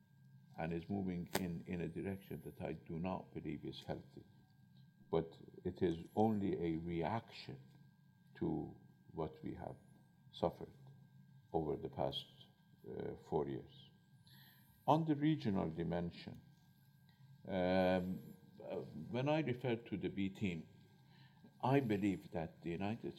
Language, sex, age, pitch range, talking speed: English, male, 50-69, 90-125 Hz, 125 wpm